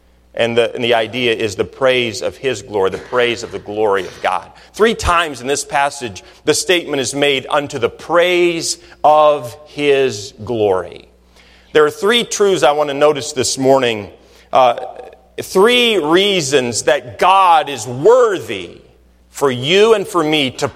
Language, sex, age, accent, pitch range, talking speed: English, male, 40-59, American, 120-195 Hz, 160 wpm